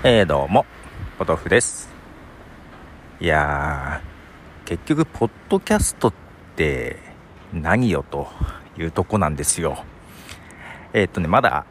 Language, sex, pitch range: Japanese, male, 80-130 Hz